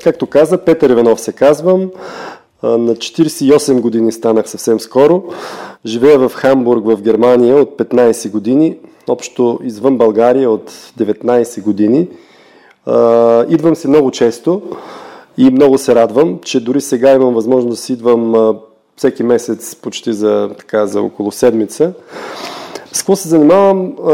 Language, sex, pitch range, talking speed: Bulgarian, male, 115-150 Hz, 135 wpm